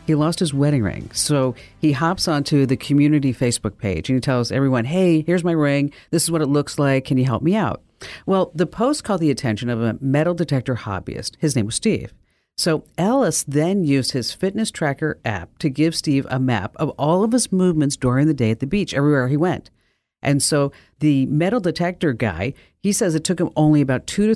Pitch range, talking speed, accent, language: 130-180 Hz, 220 wpm, American, English